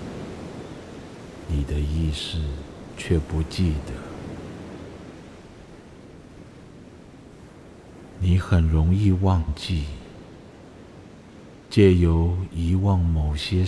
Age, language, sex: 50-69, Chinese, male